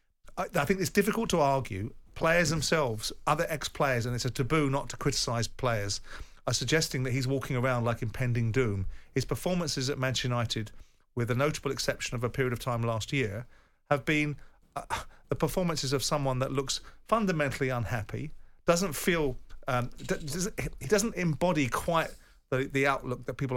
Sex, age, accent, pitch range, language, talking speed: male, 40-59, British, 115-145 Hz, English, 170 wpm